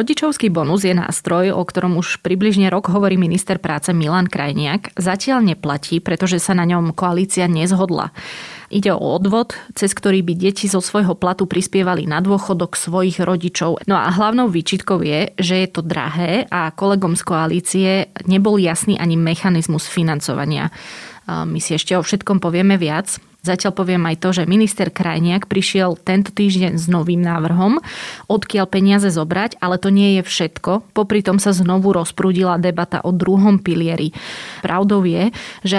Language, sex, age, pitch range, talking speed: Slovak, female, 20-39, 175-195 Hz, 160 wpm